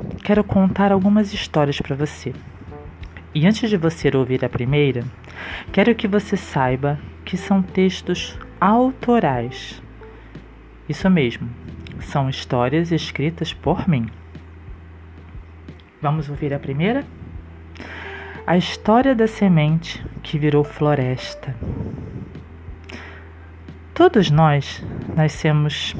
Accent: Brazilian